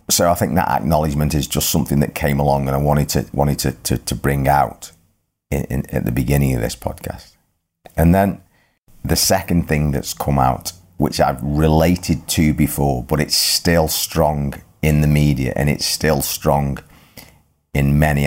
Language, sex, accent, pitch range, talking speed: English, male, British, 70-85 Hz, 180 wpm